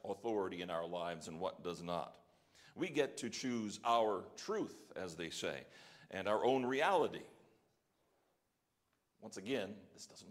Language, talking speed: English, 145 wpm